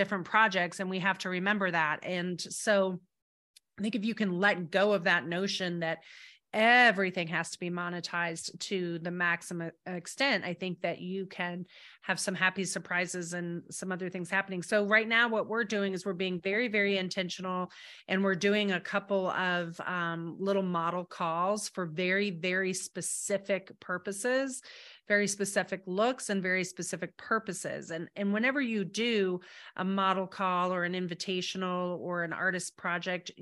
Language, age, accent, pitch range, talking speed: English, 30-49, American, 175-200 Hz, 165 wpm